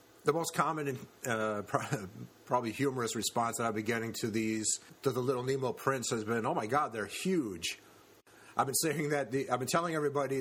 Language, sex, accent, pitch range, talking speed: English, male, American, 110-140 Hz, 200 wpm